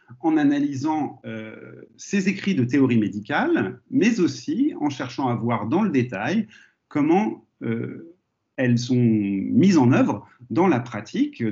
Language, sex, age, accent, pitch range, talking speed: French, male, 40-59, French, 115-185 Hz, 140 wpm